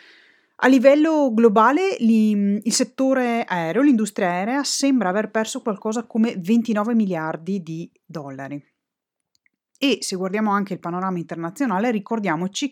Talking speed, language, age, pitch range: 120 wpm, Italian, 30-49, 170-230 Hz